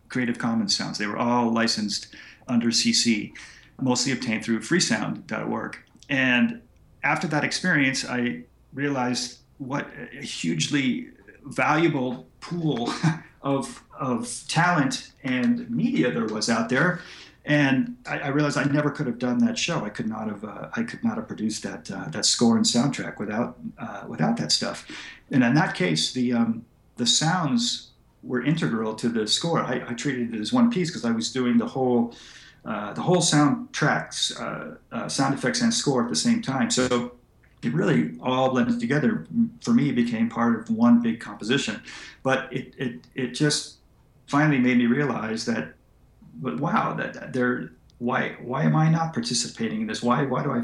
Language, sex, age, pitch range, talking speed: English, male, 40-59, 120-175 Hz, 175 wpm